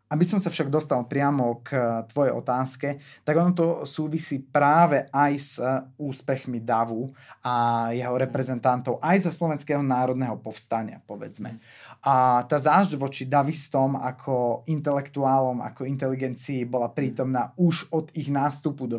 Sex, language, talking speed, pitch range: male, Slovak, 135 wpm, 125-150 Hz